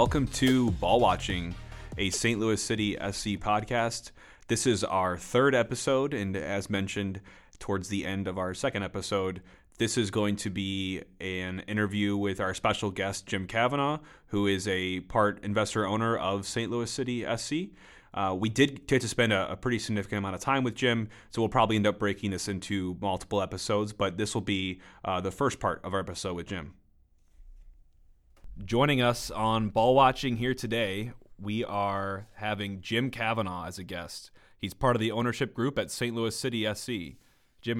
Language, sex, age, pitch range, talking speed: English, male, 30-49, 95-120 Hz, 180 wpm